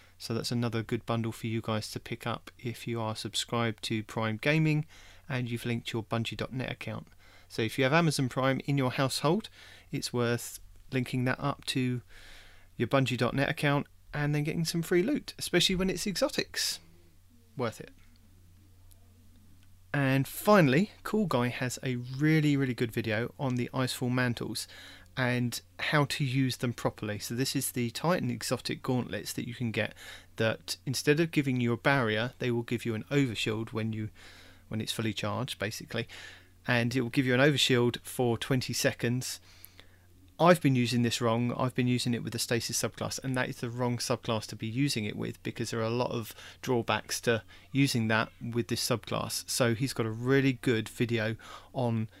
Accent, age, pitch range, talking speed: British, 30-49, 110-130 Hz, 185 wpm